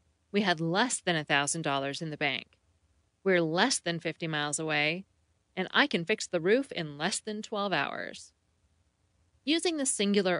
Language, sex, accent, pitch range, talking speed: English, female, American, 165-240 Hz, 160 wpm